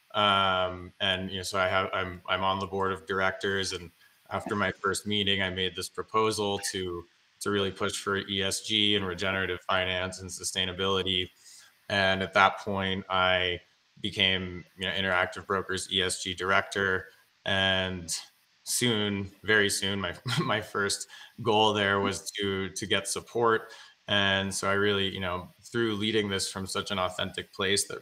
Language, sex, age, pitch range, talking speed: English, male, 20-39, 95-100 Hz, 160 wpm